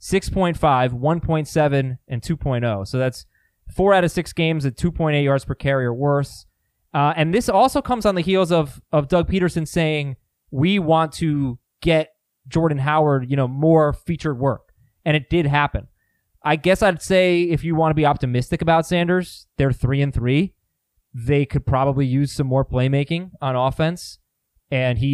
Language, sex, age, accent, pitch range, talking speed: English, male, 20-39, American, 130-175 Hz, 170 wpm